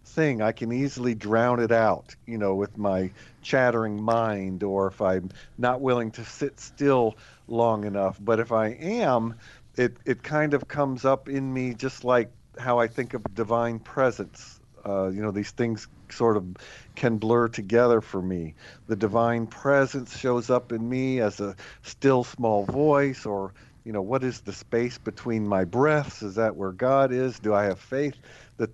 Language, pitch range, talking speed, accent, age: English, 110-135 Hz, 180 wpm, American, 50-69